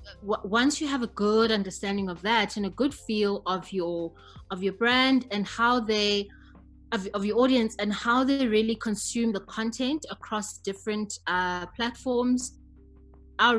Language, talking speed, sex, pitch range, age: English, 160 wpm, female, 175-215 Hz, 20-39